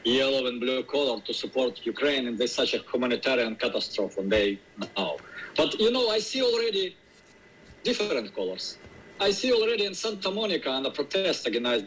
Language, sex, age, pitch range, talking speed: English, male, 50-69, 135-225 Hz, 165 wpm